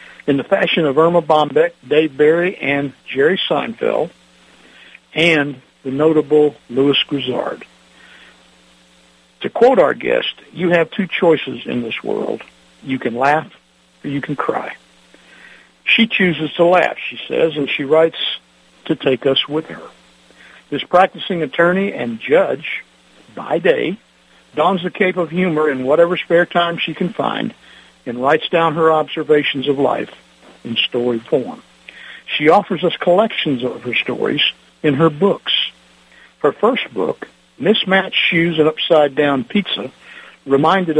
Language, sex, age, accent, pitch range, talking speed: English, male, 60-79, American, 125-175 Hz, 140 wpm